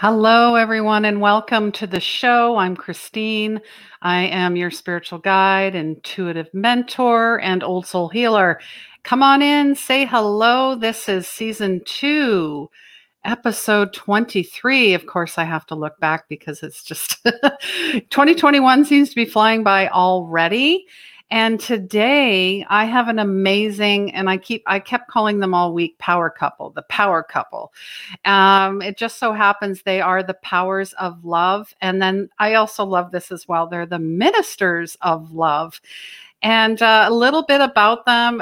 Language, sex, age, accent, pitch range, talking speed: English, female, 50-69, American, 185-230 Hz, 155 wpm